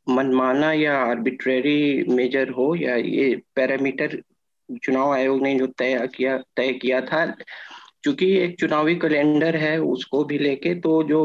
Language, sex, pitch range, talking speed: Hindi, male, 130-155 Hz, 145 wpm